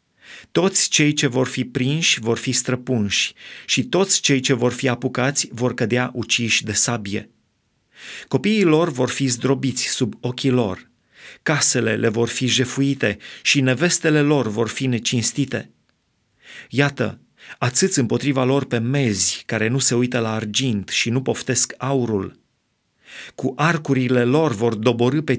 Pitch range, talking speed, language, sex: 120-150 Hz, 145 wpm, Romanian, male